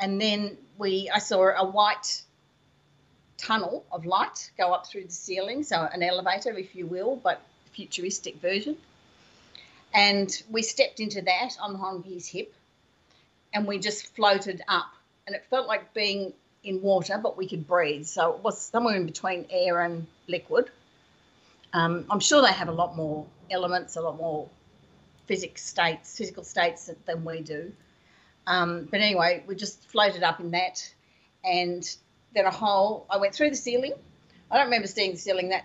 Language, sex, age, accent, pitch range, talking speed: English, female, 40-59, Australian, 175-210 Hz, 170 wpm